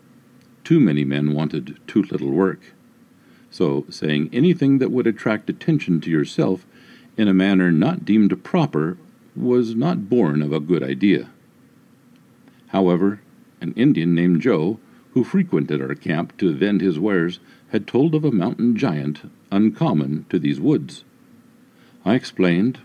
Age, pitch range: 50-69, 85-130 Hz